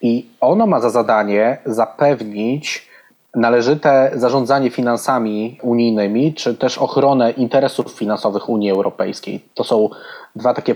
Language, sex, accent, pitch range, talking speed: Polish, male, native, 110-130 Hz, 115 wpm